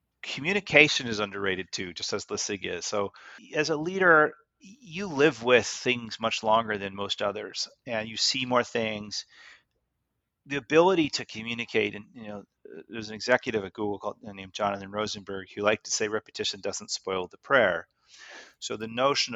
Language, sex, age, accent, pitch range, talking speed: English, male, 30-49, American, 105-130 Hz, 165 wpm